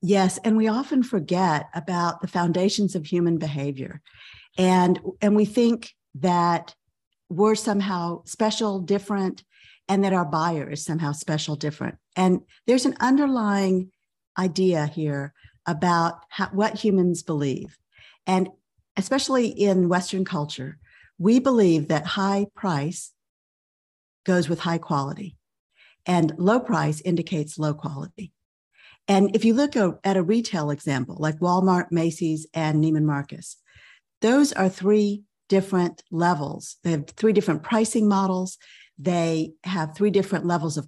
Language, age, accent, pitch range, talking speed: English, 50-69, American, 165-210 Hz, 130 wpm